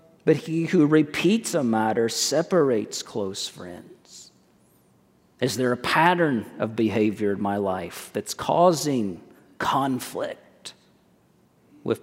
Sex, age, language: male, 40-59, English